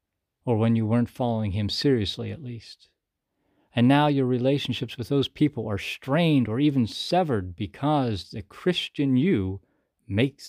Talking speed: 150 wpm